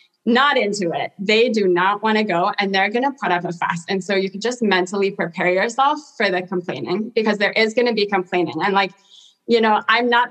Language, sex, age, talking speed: English, female, 20-39, 240 wpm